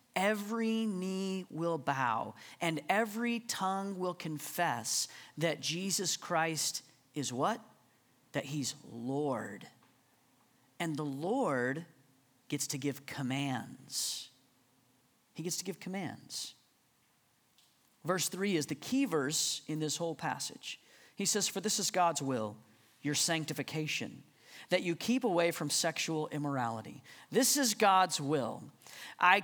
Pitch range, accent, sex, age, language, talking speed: 150-215 Hz, American, male, 40-59, English, 120 wpm